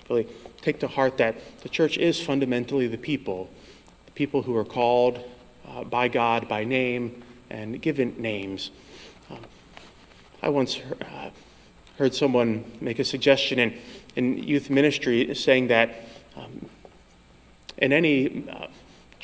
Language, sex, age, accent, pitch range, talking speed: English, male, 30-49, American, 115-135 Hz, 130 wpm